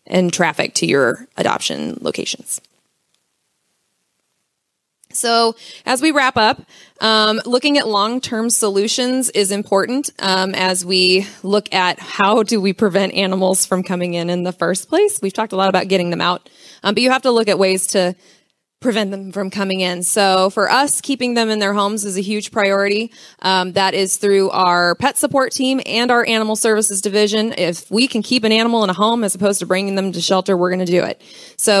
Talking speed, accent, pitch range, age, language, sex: 200 wpm, American, 185-230 Hz, 20-39, English, female